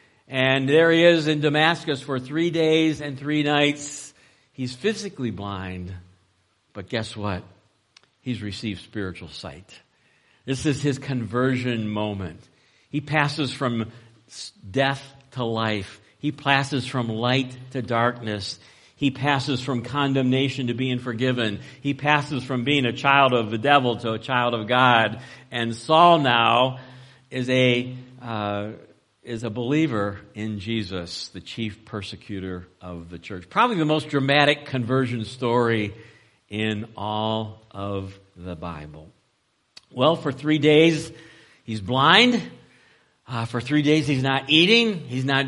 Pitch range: 110-145 Hz